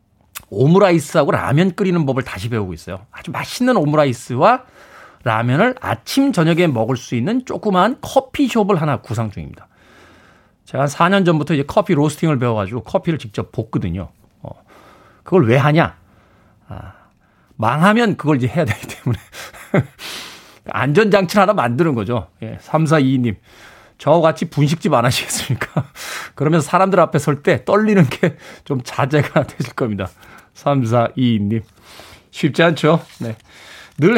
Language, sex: Korean, male